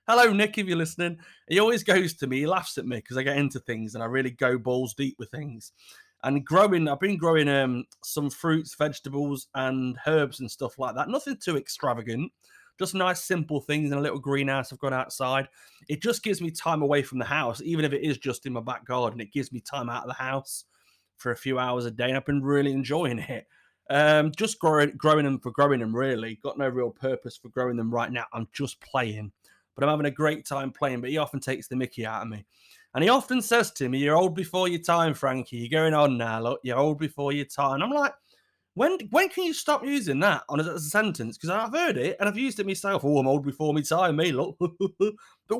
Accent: British